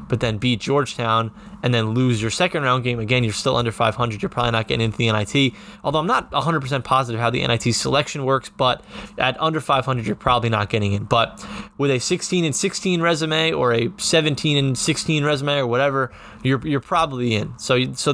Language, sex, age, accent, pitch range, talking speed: English, male, 20-39, American, 120-150 Hz, 215 wpm